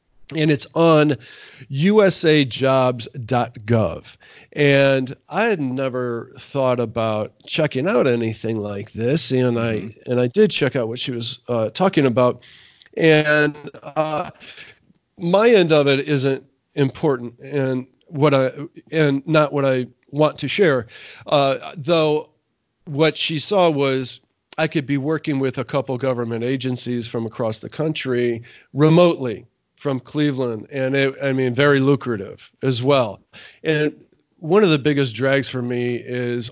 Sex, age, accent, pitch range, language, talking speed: male, 40-59, American, 120-150 Hz, English, 140 wpm